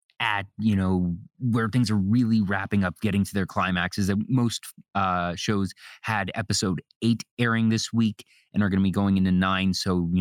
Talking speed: 195 wpm